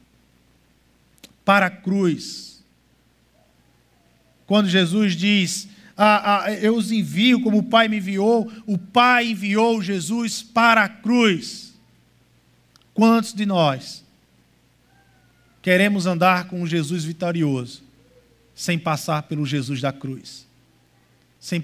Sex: male